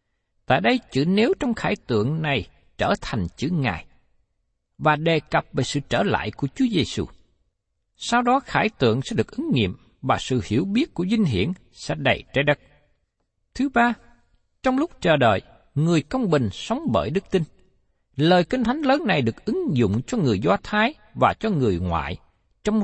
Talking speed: 185 wpm